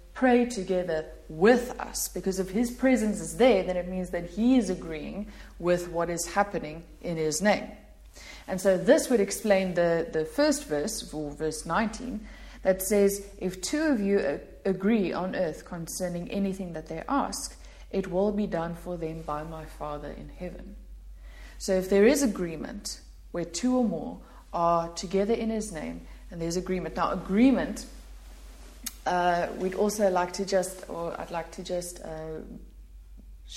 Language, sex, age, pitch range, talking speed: English, female, 30-49, 165-205 Hz, 165 wpm